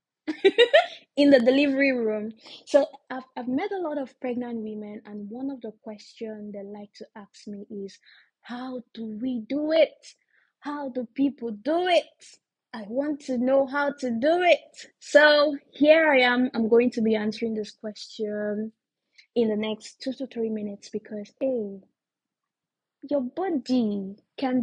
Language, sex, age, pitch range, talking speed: English, female, 20-39, 220-280 Hz, 160 wpm